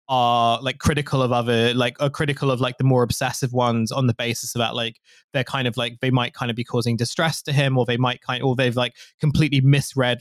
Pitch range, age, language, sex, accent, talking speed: 125-140 Hz, 20-39, English, male, British, 255 wpm